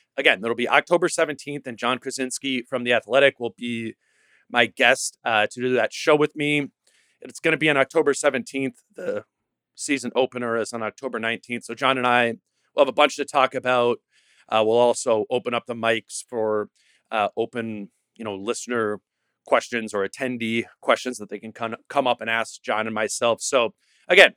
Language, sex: English, male